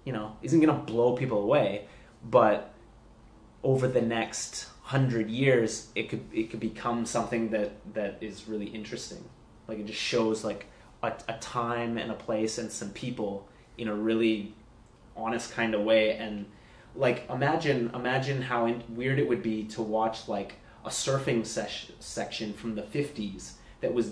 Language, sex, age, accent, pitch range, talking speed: English, male, 30-49, American, 110-120 Hz, 170 wpm